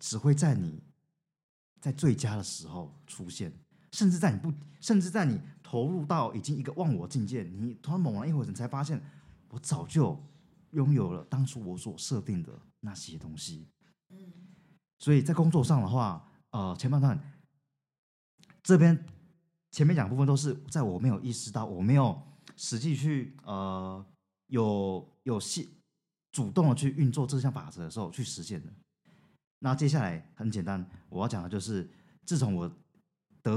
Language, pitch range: Chinese, 110-160 Hz